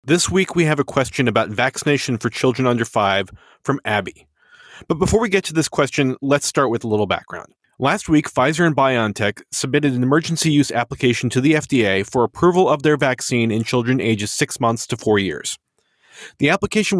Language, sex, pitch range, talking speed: English, male, 115-155 Hz, 195 wpm